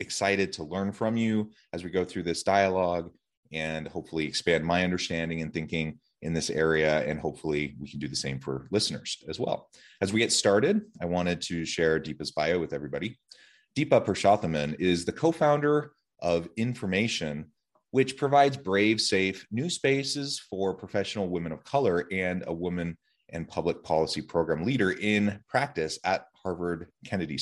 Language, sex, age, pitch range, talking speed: English, male, 30-49, 80-105 Hz, 165 wpm